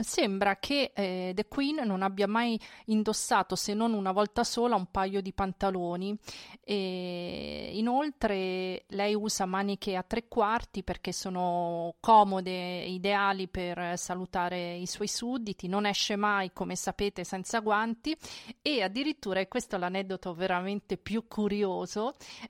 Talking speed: 135 wpm